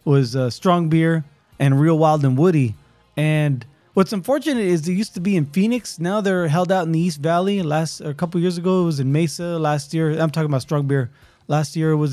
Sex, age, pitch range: male, 20-39, 140-175 Hz